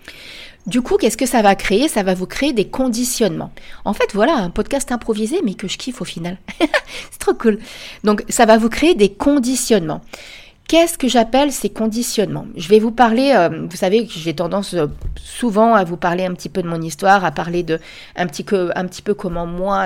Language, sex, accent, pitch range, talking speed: French, female, French, 170-220 Hz, 220 wpm